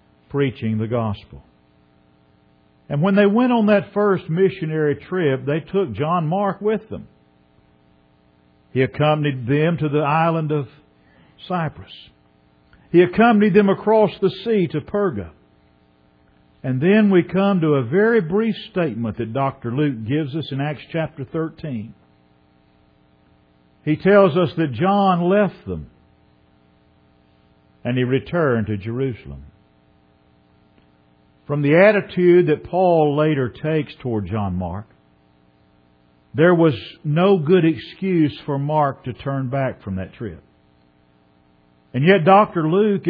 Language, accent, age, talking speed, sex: English, American, 50-69, 125 wpm, male